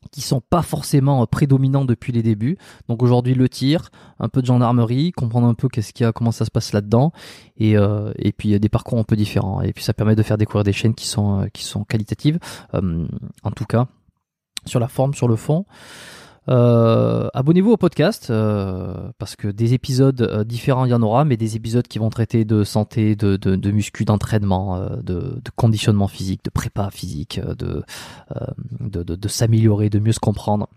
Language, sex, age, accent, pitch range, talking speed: French, male, 20-39, French, 110-135 Hz, 200 wpm